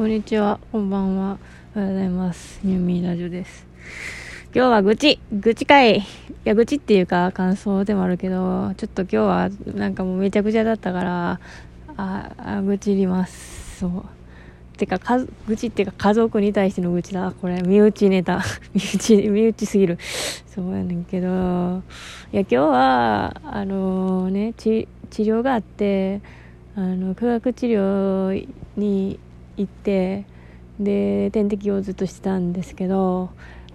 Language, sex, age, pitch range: Japanese, female, 20-39, 185-215 Hz